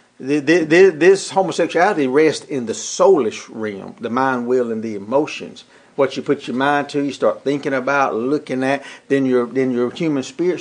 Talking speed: 175 wpm